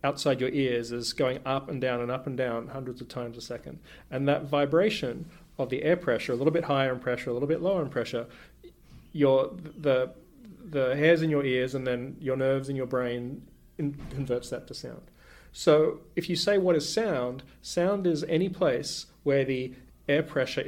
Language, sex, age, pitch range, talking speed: English, male, 30-49, 125-160 Hz, 195 wpm